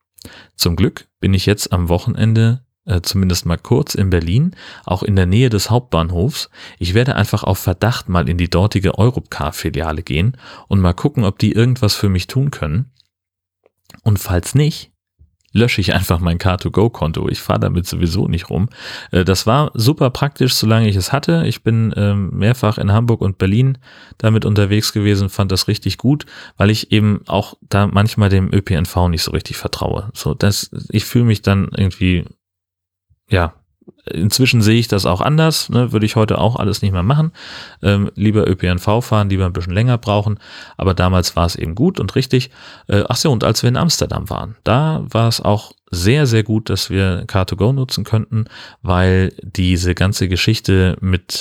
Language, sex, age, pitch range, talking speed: German, male, 40-59, 90-115 Hz, 180 wpm